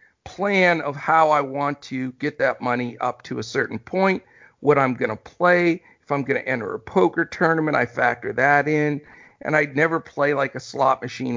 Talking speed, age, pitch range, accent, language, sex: 205 wpm, 50-69, 125-155 Hz, American, English, male